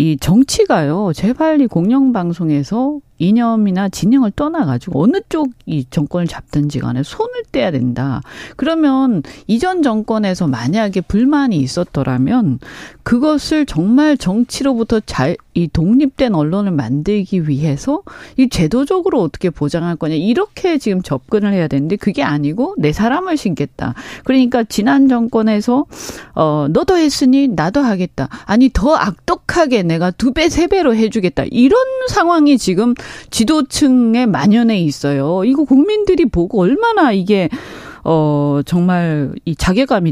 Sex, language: female, Korean